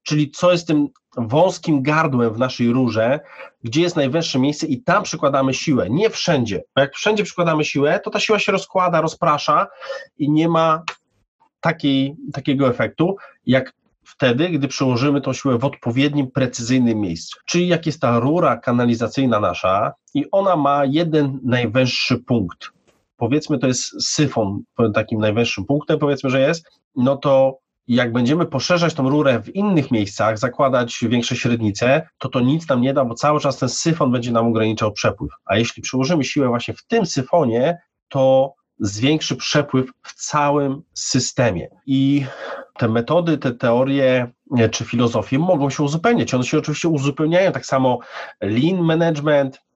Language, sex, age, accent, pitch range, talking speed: Polish, male, 30-49, native, 125-155 Hz, 155 wpm